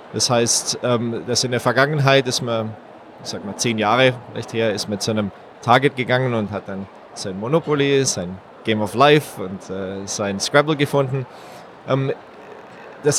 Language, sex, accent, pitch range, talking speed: German, male, German, 110-135 Hz, 155 wpm